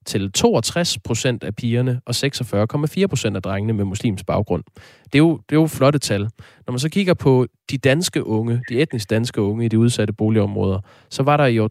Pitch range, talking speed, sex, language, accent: 110-135 Hz, 205 wpm, male, Danish, native